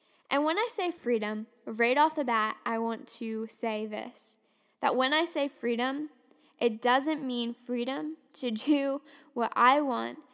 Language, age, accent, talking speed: English, 10-29, American, 165 wpm